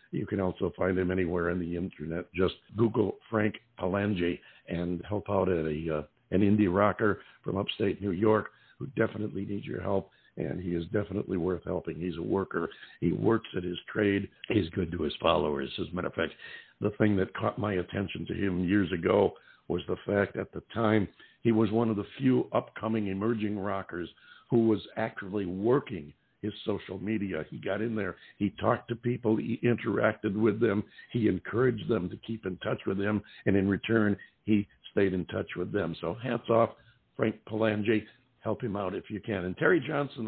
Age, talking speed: 60-79, 190 wpm